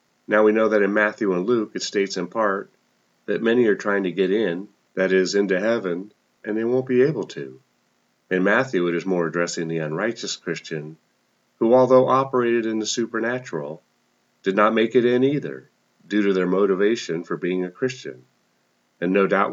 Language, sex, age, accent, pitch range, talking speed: English, male, 40-59, American, 95-120 Hz, 185 wpm